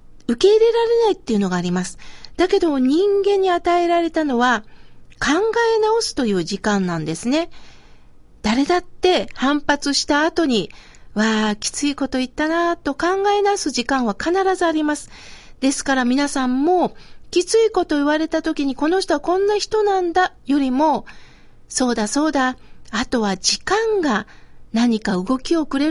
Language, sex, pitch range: Japanese, female, 255-340 Hz